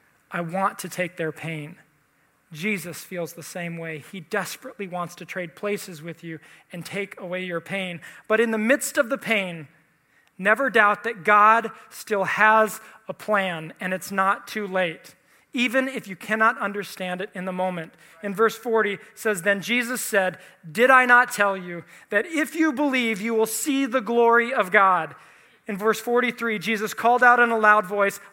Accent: American